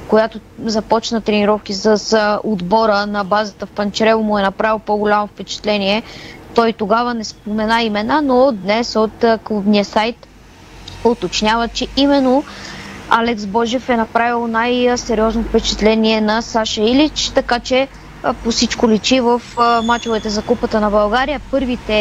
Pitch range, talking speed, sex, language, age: 220-250 Hz, 135 wpm, female, Bulgarian, 20-39